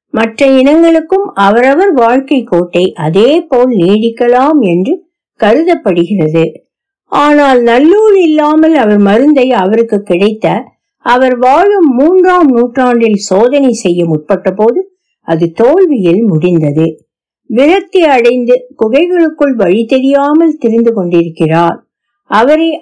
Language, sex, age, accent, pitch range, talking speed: Tamil, female, 60-79, native, 195-300 Hz, 95 wpm